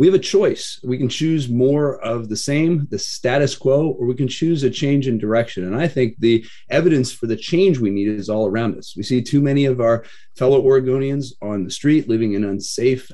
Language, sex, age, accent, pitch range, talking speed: English, male, 30-49, American, 110-140 Hz, 230 wpm